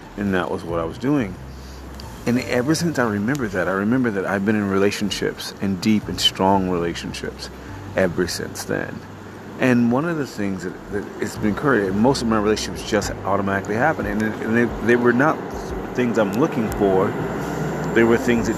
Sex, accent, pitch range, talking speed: male, American, 95-115 Hz, 195 wpm